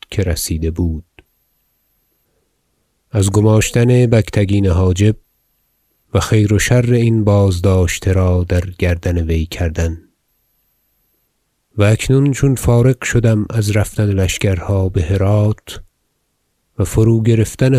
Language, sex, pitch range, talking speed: Persian, male, 95-110 Hz, 105 wpm